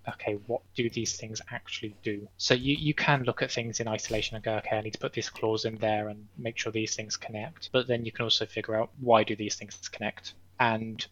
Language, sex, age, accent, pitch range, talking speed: English, male, 20-39, British, 105-120 Hz, 250 wpm